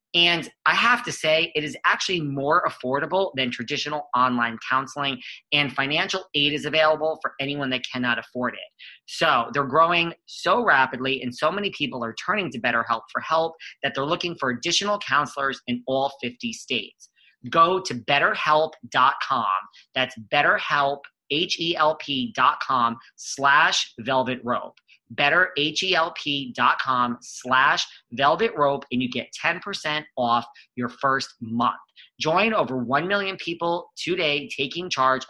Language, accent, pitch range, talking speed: English, American, 125-160 Hz, 135 wpm